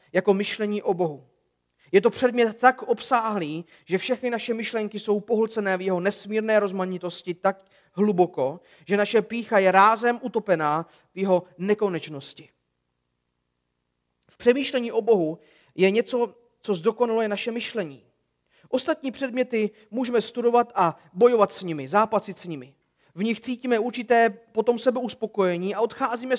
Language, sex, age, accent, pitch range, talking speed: Czech, male, 40-59, native, 170-225 Hz, 135 wpm